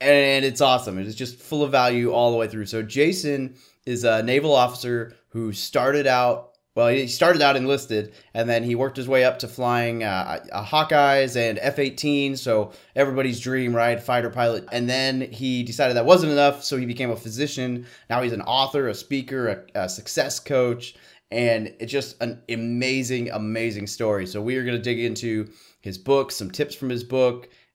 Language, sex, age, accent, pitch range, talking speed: English, male, 20-39, American, 105-130 Hz, 195 wpm